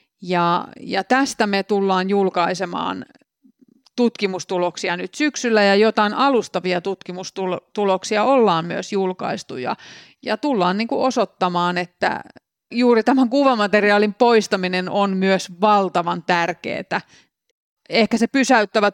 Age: 30-49